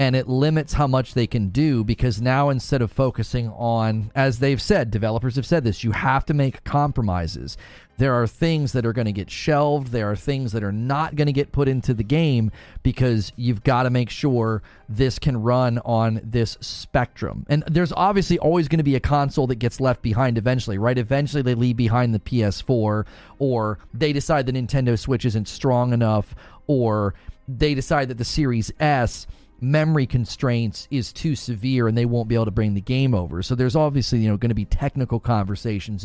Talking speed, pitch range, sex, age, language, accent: 205 wpm, 115-140 Hz, male, 30-49, English, American